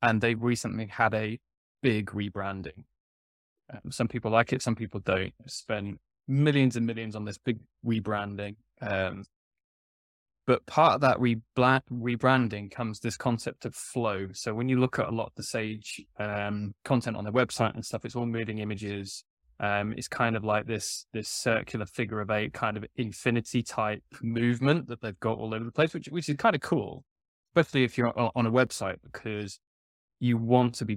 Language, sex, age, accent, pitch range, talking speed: English, male, 10-29, British, 105-125 Hz, 185 wpm